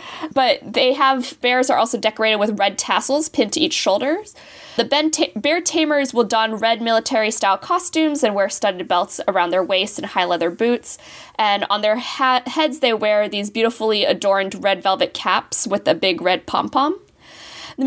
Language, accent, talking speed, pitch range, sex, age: English, American, 190 wpm, 200-275 Hz, female, 10-29